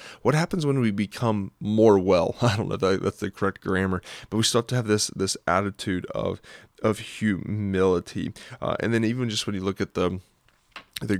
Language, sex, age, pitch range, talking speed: English, male, 20-39, 95-110 Hz, 200 wpm